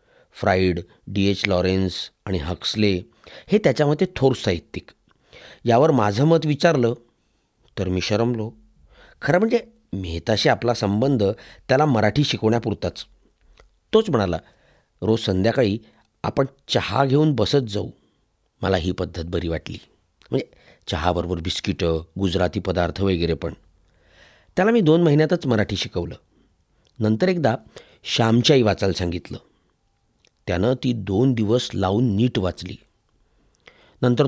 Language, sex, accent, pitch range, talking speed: Marathi, male, native, 95-135 Hz, 115 wpm